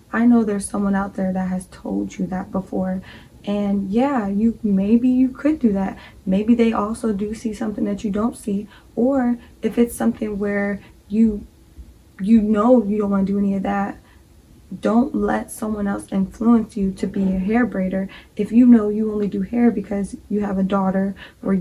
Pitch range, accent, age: 195-225 Hz, American, 20-39